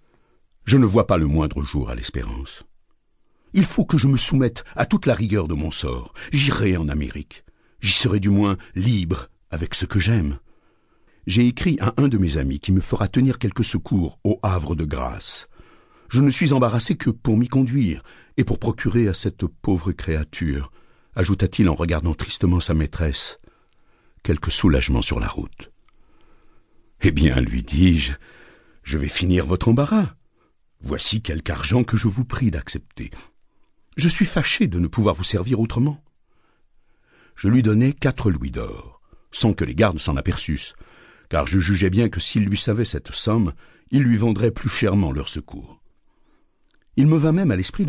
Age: 60-79